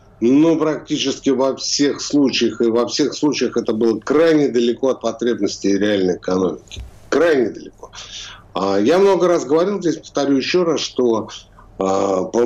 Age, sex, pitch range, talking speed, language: 60-79, male, 100-145 Hz, 145 wpm, Russian